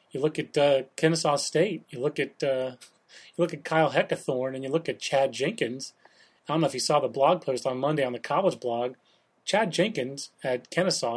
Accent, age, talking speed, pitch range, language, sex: American, 30-49, 215 wpm, 135-165 Hz, English, male